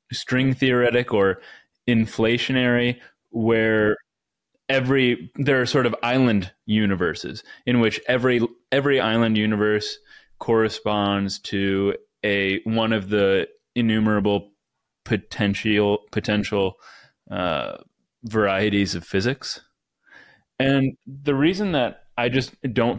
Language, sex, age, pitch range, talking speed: English, male, 20-39, 105-125 Hz, 100 wpm